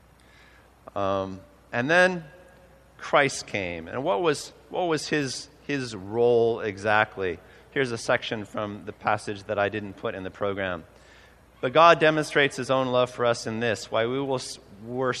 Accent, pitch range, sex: American, 105-130 Hz, male